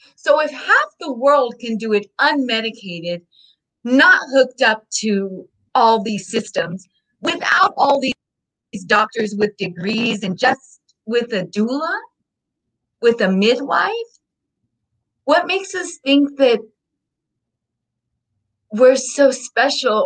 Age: 30-49